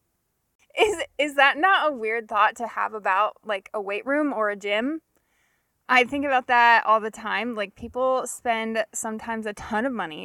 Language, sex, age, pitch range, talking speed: English, female, 20-39, 205-255 Hz, 185 wpm